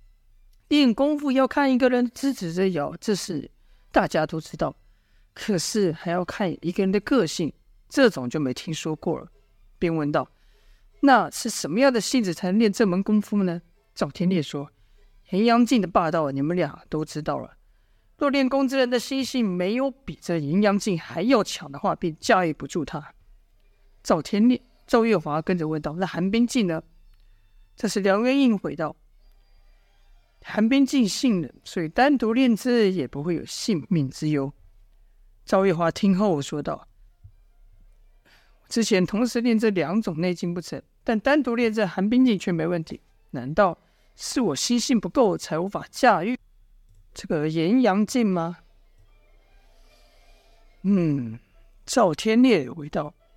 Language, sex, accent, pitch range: Chinese, female, native, 140-225 Hz